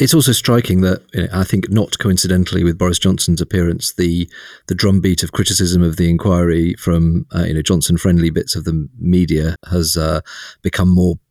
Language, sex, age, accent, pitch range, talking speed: English, male, 40-59, British, 90-105 Hz, 185 wpm